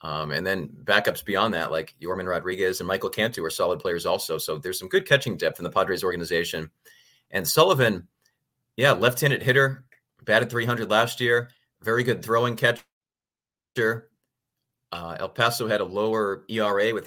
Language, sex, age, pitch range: English, male, 30-49, 105-125 Hz